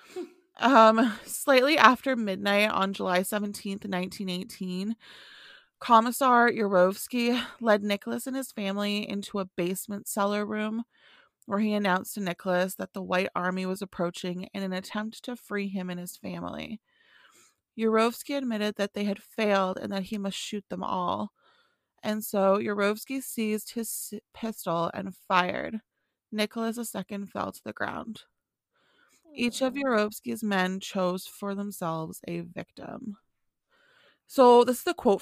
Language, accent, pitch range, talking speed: English, American, 185-230 Hz, 140 wpm